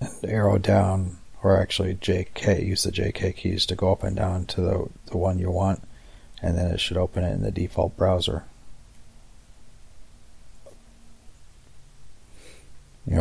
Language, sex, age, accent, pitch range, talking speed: English, male, 40-59, American, 90-105 Hz, 145 wpm